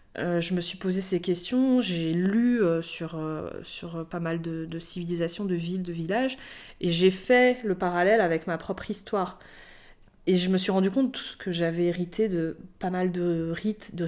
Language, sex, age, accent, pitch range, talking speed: French, female, 20-39, French, 170-215 Hz, 200 wpm